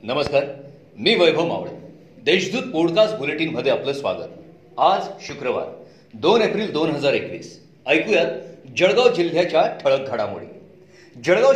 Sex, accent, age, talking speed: male, native, 40-59, 115 wpm